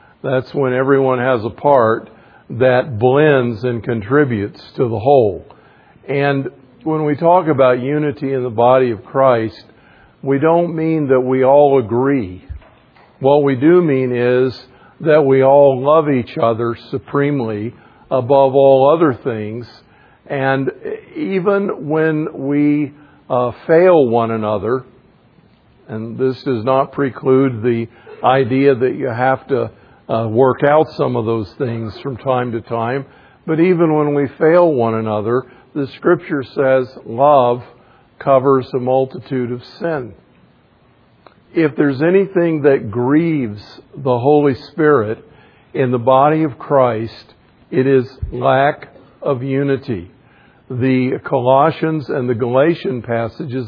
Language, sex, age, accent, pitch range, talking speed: English, male, 50-69, American, 120-145 Hz, 130 wpm